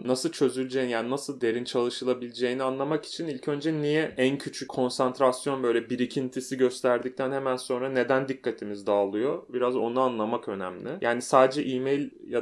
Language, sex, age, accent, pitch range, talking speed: Turkish, male, 30-49, native, 115-135 Hz, 145 wpm